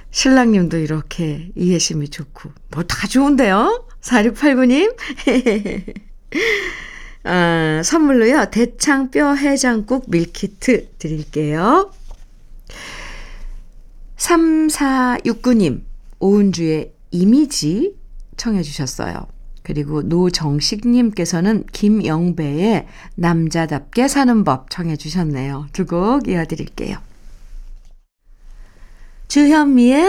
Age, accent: 50-69, native